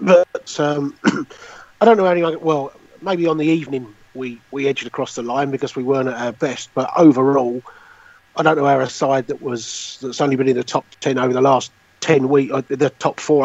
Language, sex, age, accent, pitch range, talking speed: English, male, 40-59, British, 130-160 Hz, 215 wpm